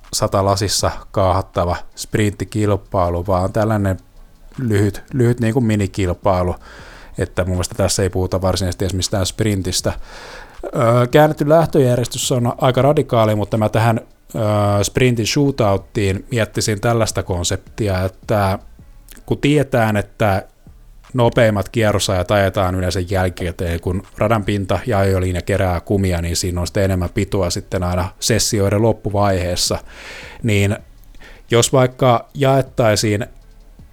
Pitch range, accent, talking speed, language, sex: 95-115 Hz, native, 110 wpm, Finnish, male